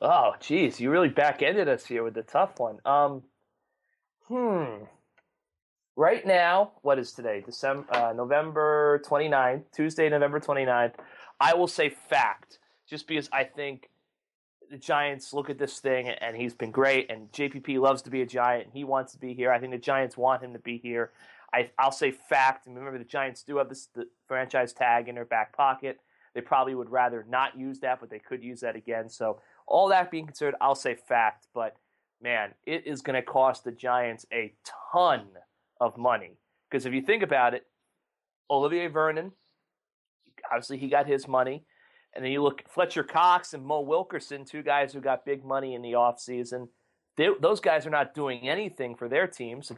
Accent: American